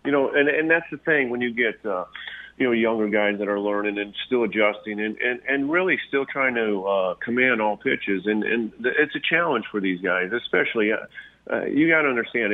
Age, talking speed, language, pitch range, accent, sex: 40-59, 230 wpm, English, 105-125 Hz, American, male